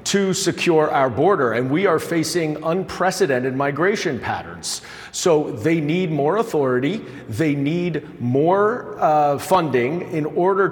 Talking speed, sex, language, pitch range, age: 130 wpm, male, English, 135-180 Hz, 40-59